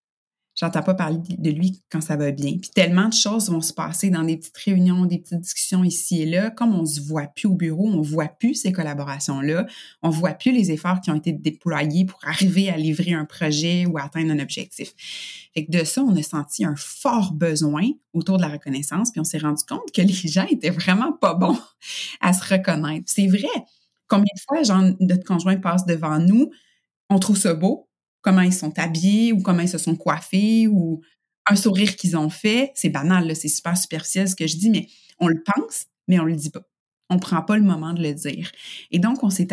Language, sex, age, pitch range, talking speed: French, female, 30-49, 160-195 Hz, 225 wpm